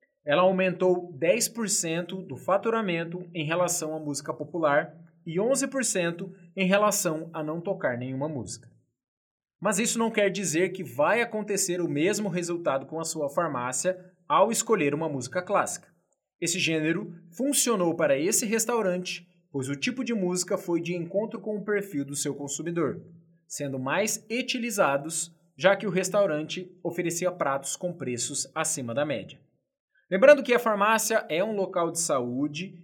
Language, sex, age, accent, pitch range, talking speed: Portuguese, male, 20-39, Brazilian, 160-195 Hz, 150 wpm